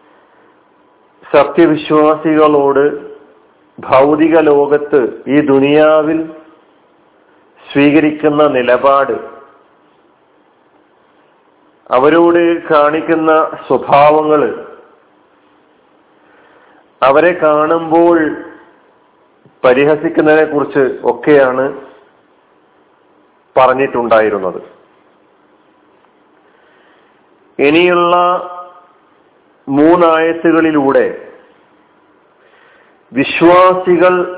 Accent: native